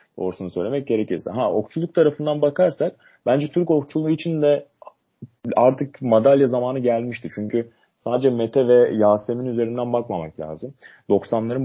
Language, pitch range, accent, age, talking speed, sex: Turkish, 95-125 Hz, native, 30-49, 130 wpm, male